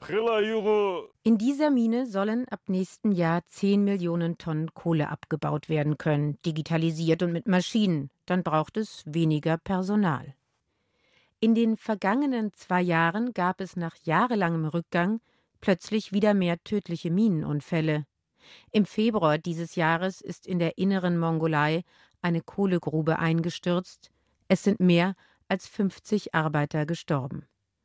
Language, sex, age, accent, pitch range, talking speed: German, female, 50-69, German, 165-205 Hz, 125 wpm